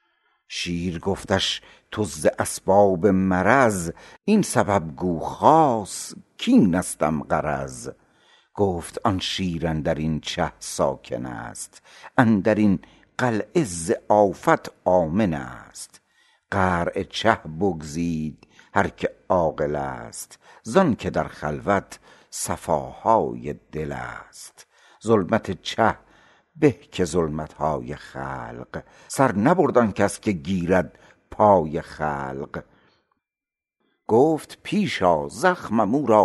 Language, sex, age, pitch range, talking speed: Persian, male, 60-79, 85-115 Hz, 100 wpm